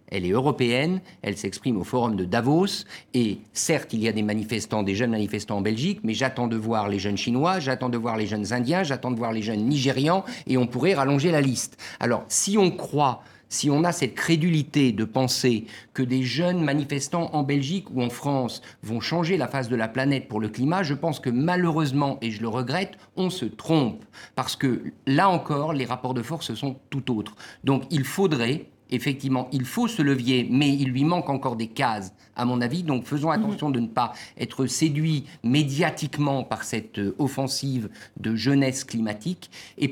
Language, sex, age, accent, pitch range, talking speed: French, male, 50-69, French, 120-165 Hz, 200 wpm